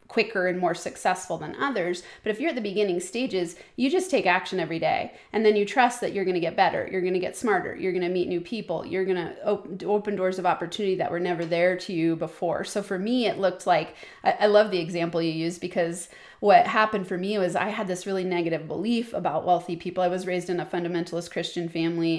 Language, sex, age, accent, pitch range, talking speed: English, female, 30-49, American, 175-215 Hz, 230 wpm